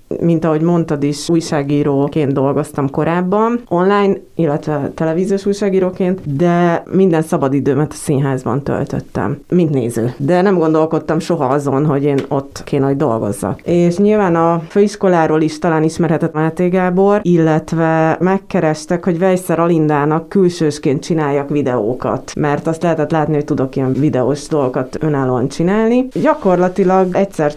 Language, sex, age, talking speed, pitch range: Hungarian, female, 30-49, 130 wpm, 145-175 Hz